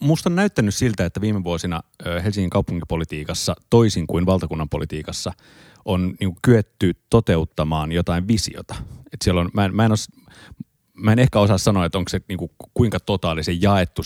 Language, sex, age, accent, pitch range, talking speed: Finnish, male, 30-49, native, 85-105 Hz, 155 wpm